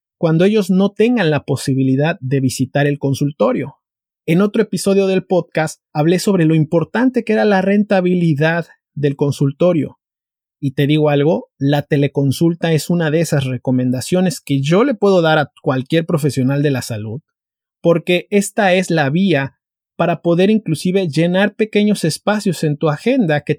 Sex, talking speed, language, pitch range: male, 160 wpm, Spanish, 140-190 Hz